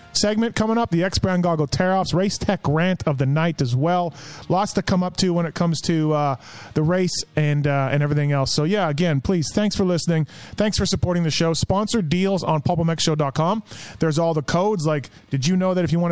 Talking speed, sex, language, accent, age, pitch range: 225 wpm, male, English, American, 30-49, 150-185 Hz